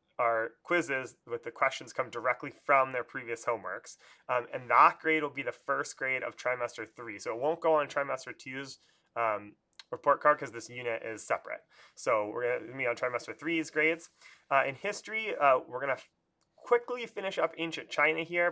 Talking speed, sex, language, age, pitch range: 190 wpm, male, English, 30-49, 130-160 Hz